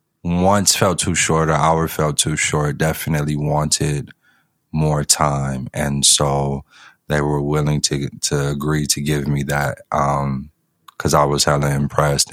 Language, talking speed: English, 150 wpm